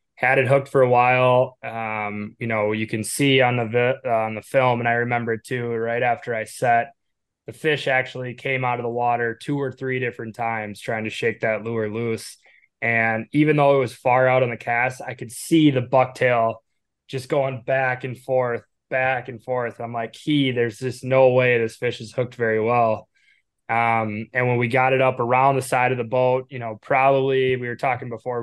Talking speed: 215 wpm